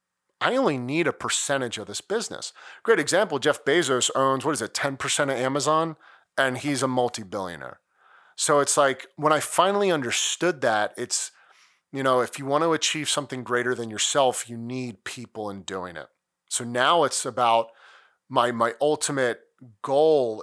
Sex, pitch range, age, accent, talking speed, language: male, 120-145 Hz, 30-49, American, 165 wpm, English